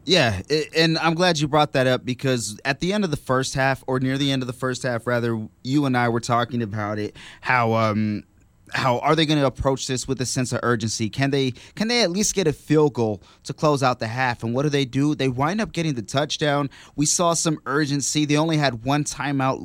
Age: 20-39